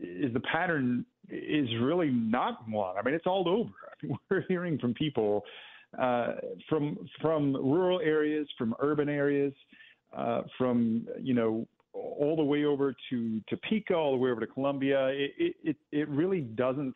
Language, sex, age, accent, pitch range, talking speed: English, male, 40-59, American, 125-155 Hz, 165 wpm